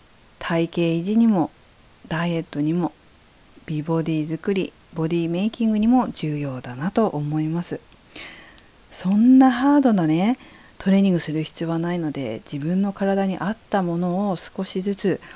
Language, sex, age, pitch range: Japanese, female, 50-69, 155-195 Hz